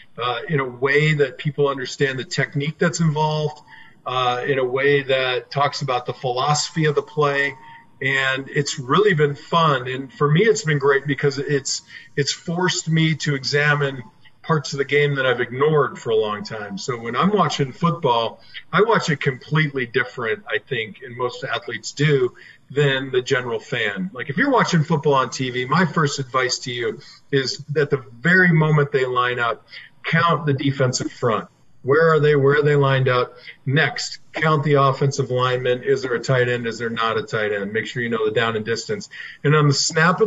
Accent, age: American, 40-59